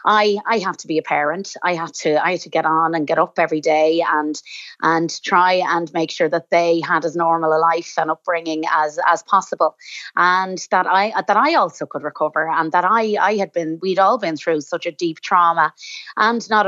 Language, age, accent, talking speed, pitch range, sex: English, 30-49, Irish, 225 wpm, 155-175 Hz, female